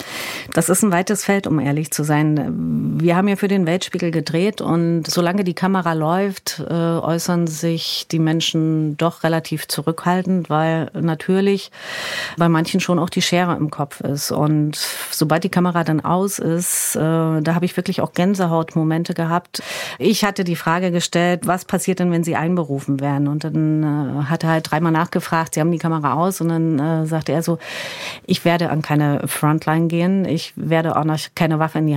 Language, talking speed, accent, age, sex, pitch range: German, 190 wpm, German, 40-59, female, 155-175 Hz